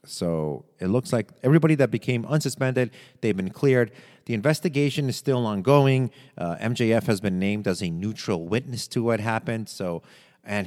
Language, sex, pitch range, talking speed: English, male, 100-130 Hz, 170 wpm